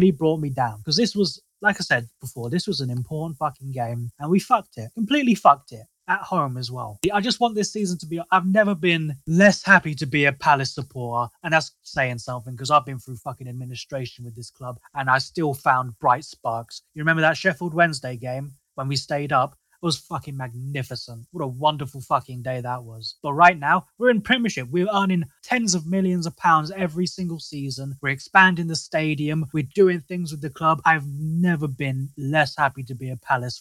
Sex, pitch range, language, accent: male, 130-180 Hz, English, British